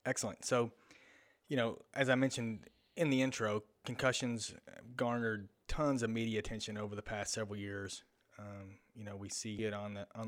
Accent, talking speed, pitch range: American, 175 wpm, 100-115 Hz